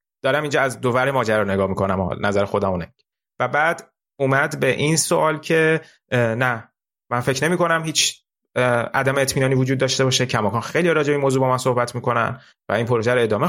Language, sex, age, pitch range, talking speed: Persian, male, 30-49, 125-180 Hz, 185 wpm